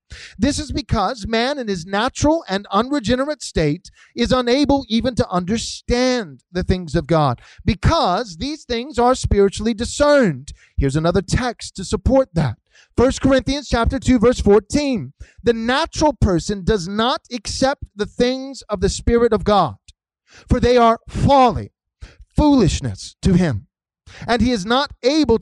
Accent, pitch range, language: American, 195-275 Hz, English